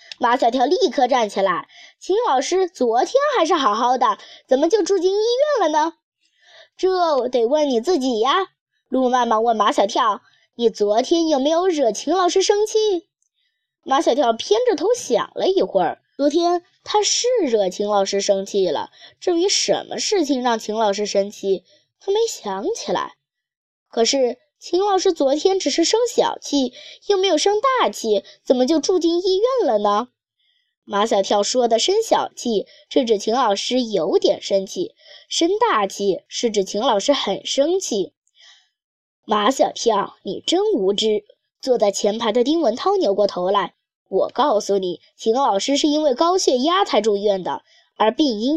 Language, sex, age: Chinese, female, 20-39